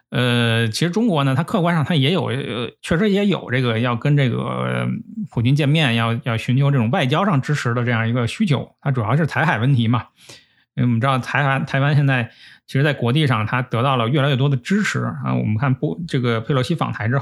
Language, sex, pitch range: Chinese, male, 115-145 Hz